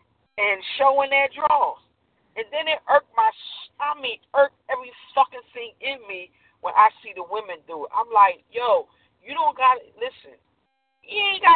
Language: English